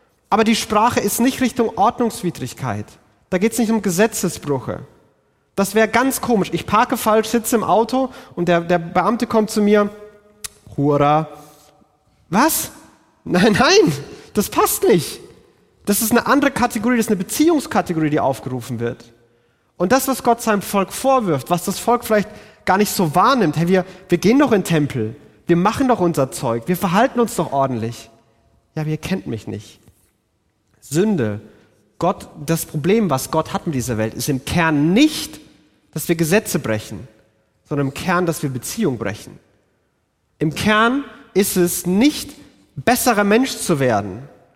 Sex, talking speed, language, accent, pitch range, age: male, 165 wpm, German, German, 140-225 Hz, 30-49